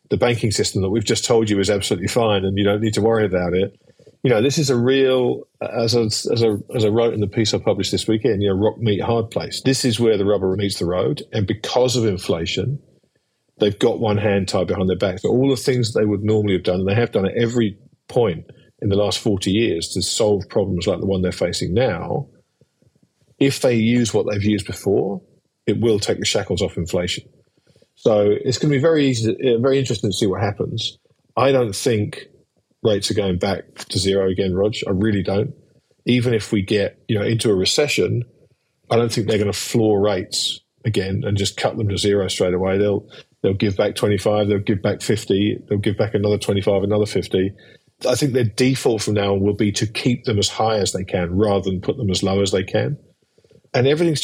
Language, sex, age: English, male, 40-59